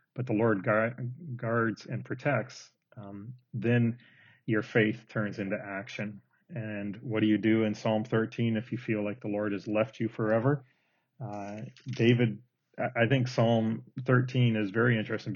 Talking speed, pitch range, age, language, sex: 155 wpm, 110-125 Hz, 40-59, English, male